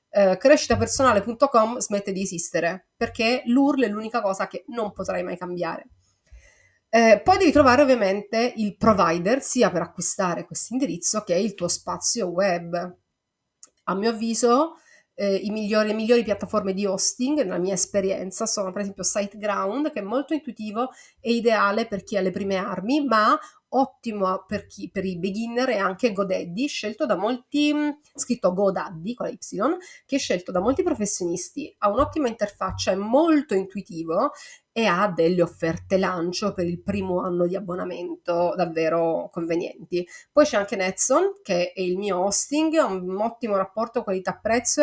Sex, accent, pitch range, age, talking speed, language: female, native, 185-245 Hz, 30-49, 160 wpm, Italian